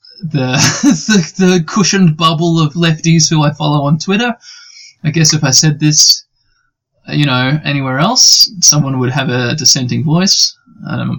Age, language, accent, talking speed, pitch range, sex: 20-39, English, Australian, 160 wpm, 140-175 Hz, male